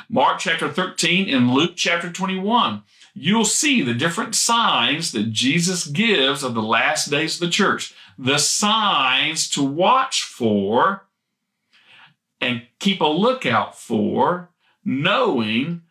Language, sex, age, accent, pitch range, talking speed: English, male, 50-69, American, 115-185 Hz, 125 wpm